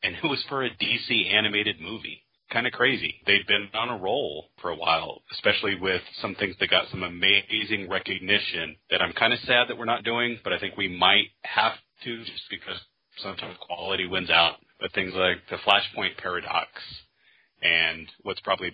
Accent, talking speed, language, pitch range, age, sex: American, 190 wpm, English, 90-115 Hz, 30-49, male